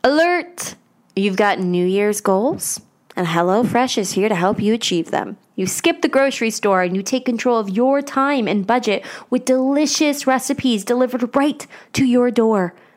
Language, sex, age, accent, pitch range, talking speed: English, female, 20-39, American, 195-255 Hz, 170 wpm